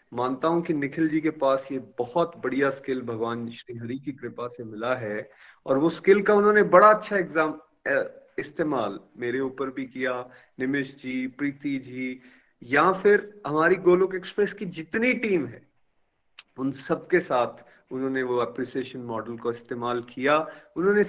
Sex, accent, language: male, native, Hindi